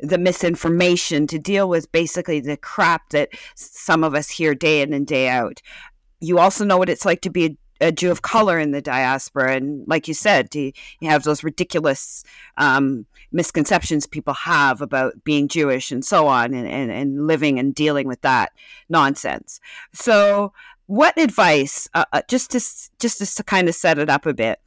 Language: English